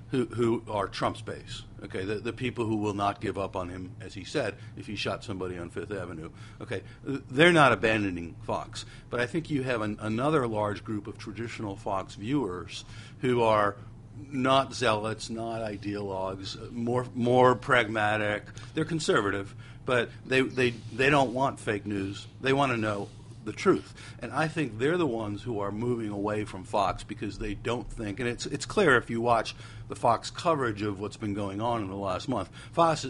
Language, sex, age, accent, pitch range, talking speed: English, male, 60-79, American, 105-125 Hz, 190 wpm